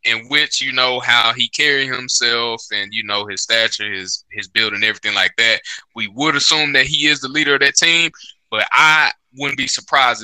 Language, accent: English, American